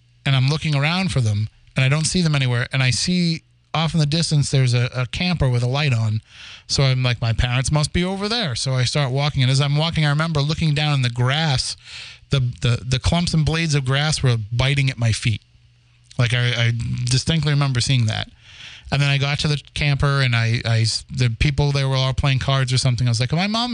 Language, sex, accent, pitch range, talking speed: English, male, American, 120-155 Hz, 245 wpm